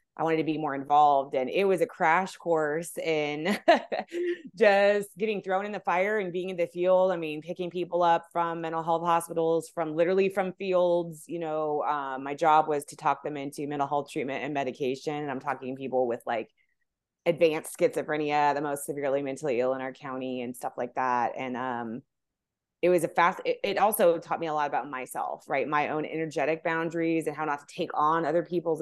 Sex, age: female, 20-39